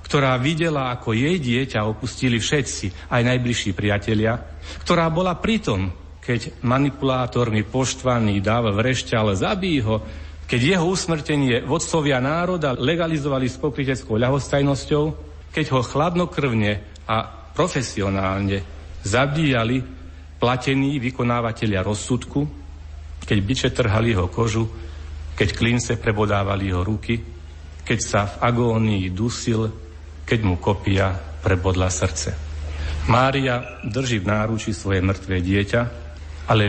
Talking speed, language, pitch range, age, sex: 110 wpm, Slovak, 90-125 Hz, 40-59, male